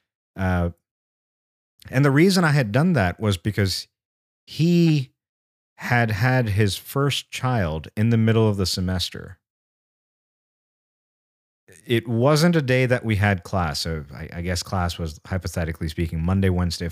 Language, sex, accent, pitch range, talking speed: English, male, American, 90-120 Hz, 140 wpm